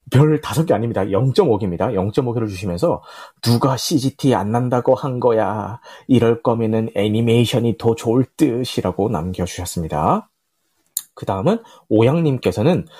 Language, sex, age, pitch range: Korean, male, 30-49, 110-160 Hz